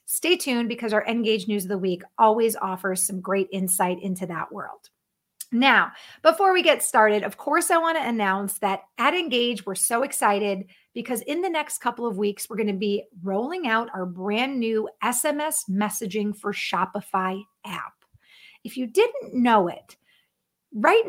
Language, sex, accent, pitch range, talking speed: English, female, American, 200-255 Hz, 175 wpm